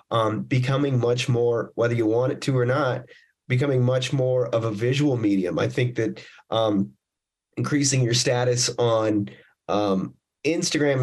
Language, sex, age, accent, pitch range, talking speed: English, male, 30-49, American, 120-150 Hz, 150 wpm